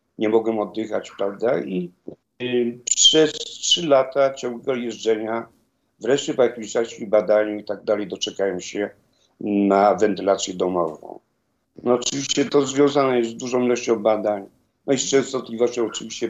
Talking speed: 140 wpm